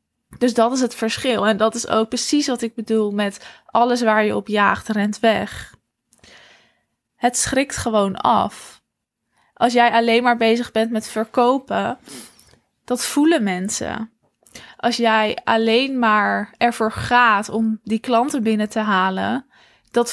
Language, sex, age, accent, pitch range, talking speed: Dutch, female, 20-39, Dutch, 215-245 Hz, 145 wpm